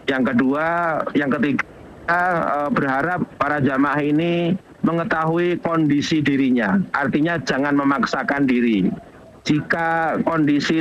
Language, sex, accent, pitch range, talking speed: Indonesian, male, native, 135-165 Hz, 95 wpm